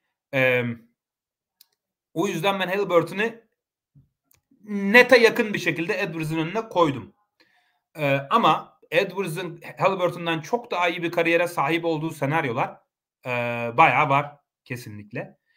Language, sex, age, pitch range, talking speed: Turkish, male, 30-49, 135-205 Hz, 110 wpm